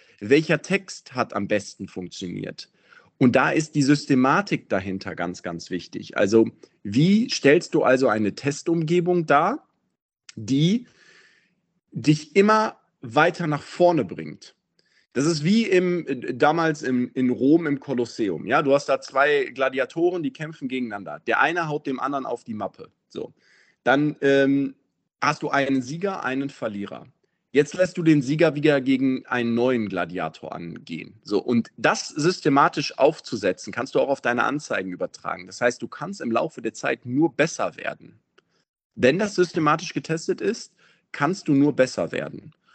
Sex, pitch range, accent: male, 125-165 Hz, German